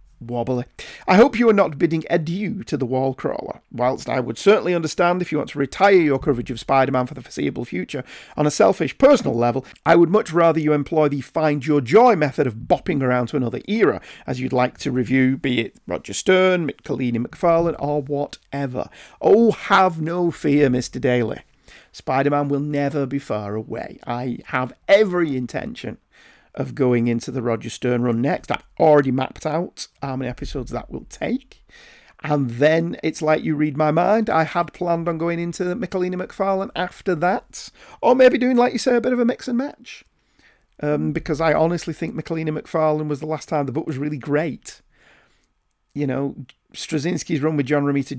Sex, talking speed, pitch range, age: male, 190 wpm, 130-170 Hz, 40-59